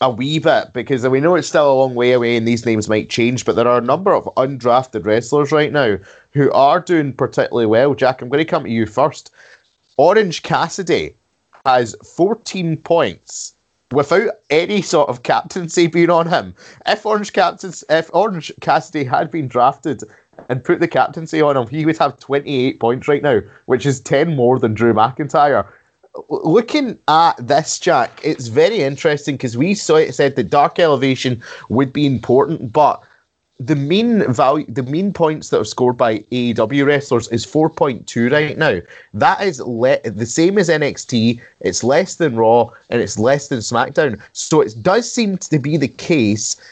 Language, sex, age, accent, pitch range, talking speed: English, male, 20-39, British, 120-160 Hz, 185 wpm